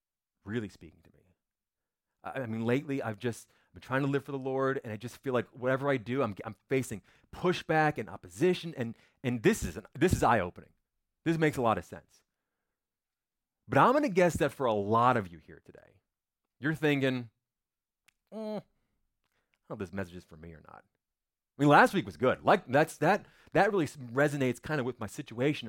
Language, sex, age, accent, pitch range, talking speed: English, male, 30-49, American, 105-150 Hz, 205 wpm